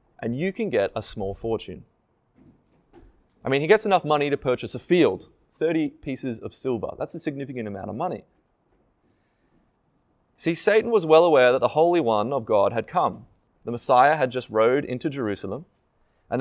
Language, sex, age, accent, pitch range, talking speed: English, male, 20-39, Australian, 170-250 Hz, 175 wpm